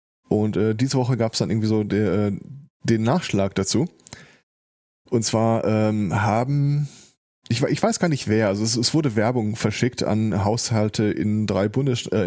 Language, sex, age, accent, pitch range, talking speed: German, male, 20-39, German, 105-130 Hz, 175 wpm